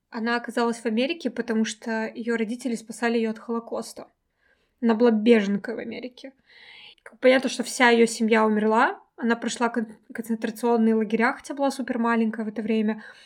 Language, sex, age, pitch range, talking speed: Russian, female, 20-39, 225-255 Hz, 155 wpm